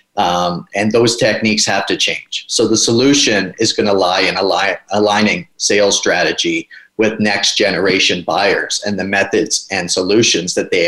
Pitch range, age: 105-125 Hz, 30-49